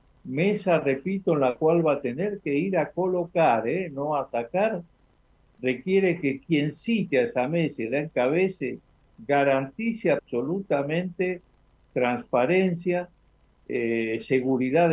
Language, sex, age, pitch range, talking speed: Italian, male, 60-79, 130-180 Hz, 125 wpm